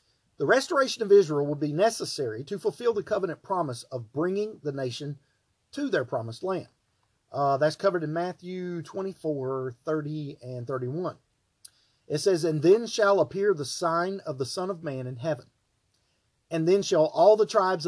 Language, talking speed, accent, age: English, 170 wpm, American, 40-59